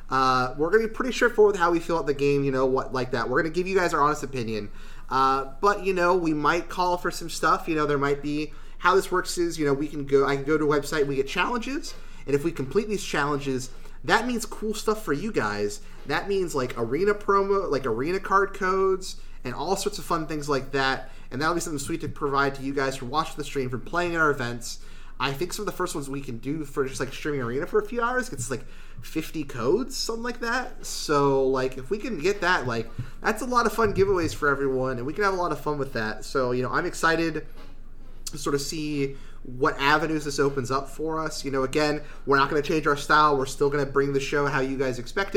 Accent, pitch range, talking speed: American, 135-180 Hz, 260 wpm